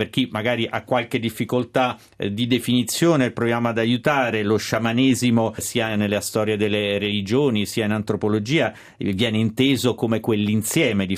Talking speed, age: 140 wpm, 40-59